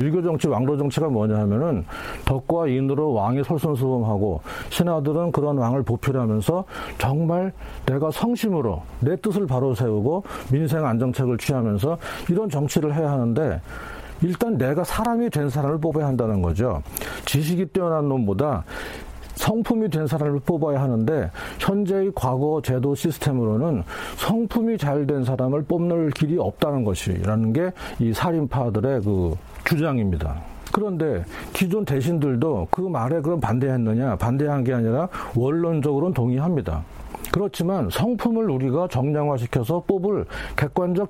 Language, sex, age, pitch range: Korean, male, 40-59, 125-175 Hz